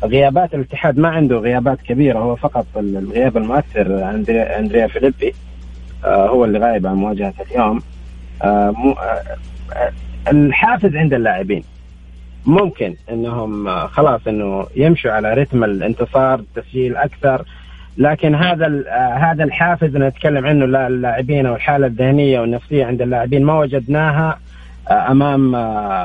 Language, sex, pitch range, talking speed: Arabic, male, 105-140 Hz, 110 wpm